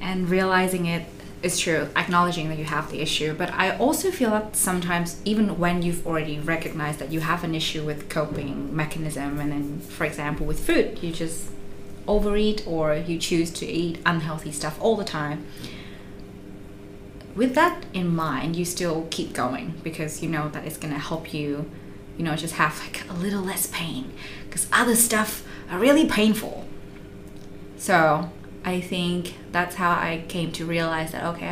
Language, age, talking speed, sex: English, 20-39, 175 wpm, female